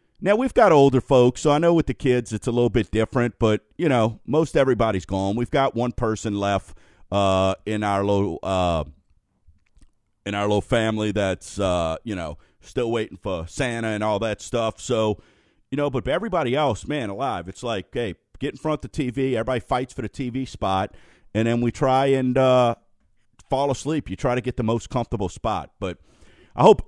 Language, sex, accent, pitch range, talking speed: English, male, American, 105-145 Hz, 200 wpm